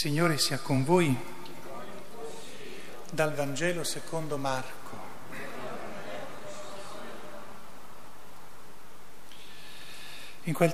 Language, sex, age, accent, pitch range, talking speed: Italian, male, 40-59, native, 125-155 Hz, 60 wpm